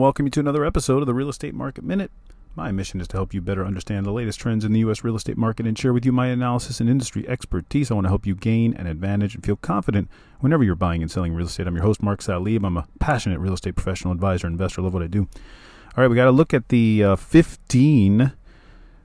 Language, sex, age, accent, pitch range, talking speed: English, male, 40-59, American, 90-120 Hz, 260 wpm